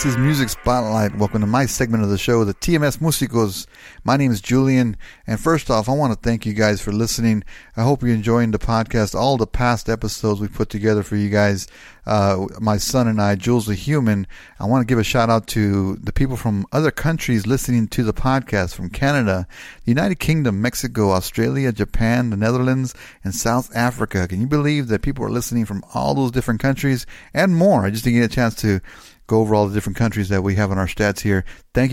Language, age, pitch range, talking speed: English, 30-49, 105-125 Hz, 220 wpm